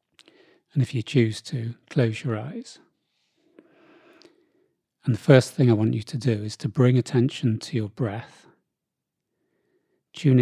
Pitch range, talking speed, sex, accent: 115-145 Hz, 145 wpm, male, British